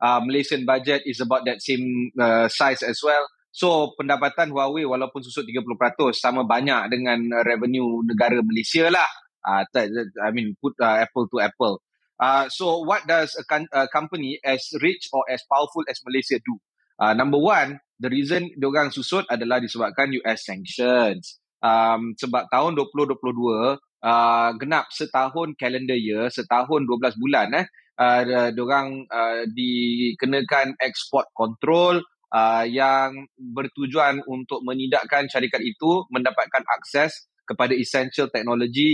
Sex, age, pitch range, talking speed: male, 20-39, 120-140 Hz, 125 wpm